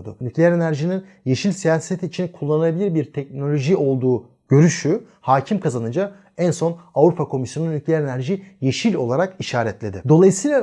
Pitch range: 135-180 Hz